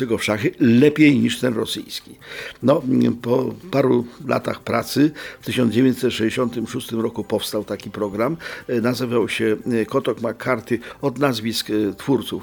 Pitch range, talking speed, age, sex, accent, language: 105-130 Hz, 110 wpm, 50-69, male, native, Polish